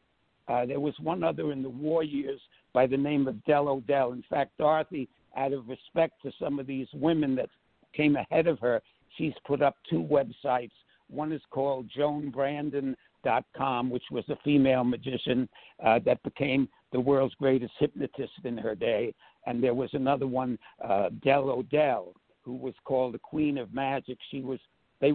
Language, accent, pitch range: English, American, 130-155 Hz